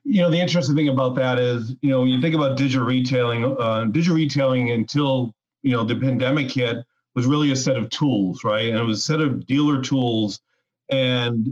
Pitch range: 125-140 Hz